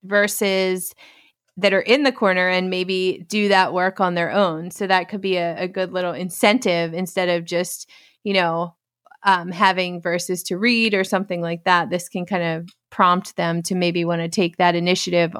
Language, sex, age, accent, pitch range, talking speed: English, female, 30-49, American, 180-220 Hz, 195 wpm